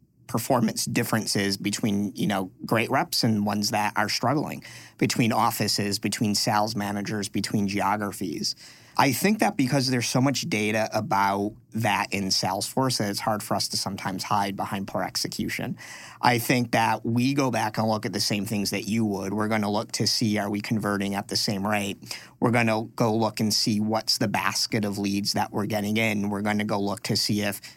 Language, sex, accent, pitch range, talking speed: English, male, American, 100-115 Hz, 200 wpm